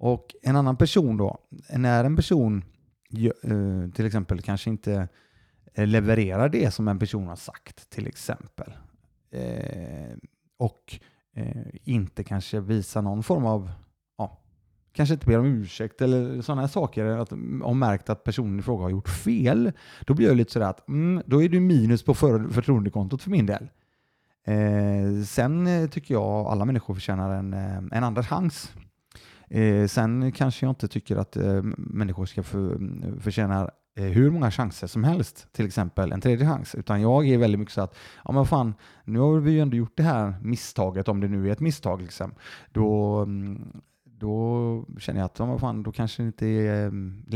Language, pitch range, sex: Swedish, 100-125 Hz, male